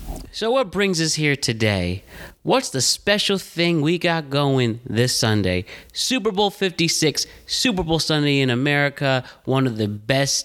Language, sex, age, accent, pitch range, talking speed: English, male, 30-49, American, 125-165 Hz, 155 wpm